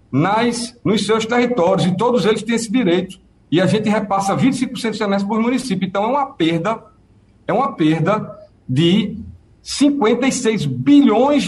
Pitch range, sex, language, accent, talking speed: 165-240 Hz, male, Portuguese, Brazilian, 145 wpm